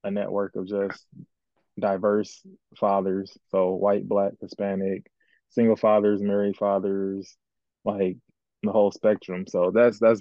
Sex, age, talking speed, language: male, 20-39, 125 wpm, English